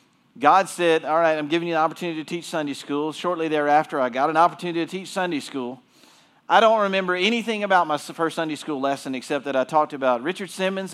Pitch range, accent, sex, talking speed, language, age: 160-245 Hz, American, male, 220 wpm, English, 40-59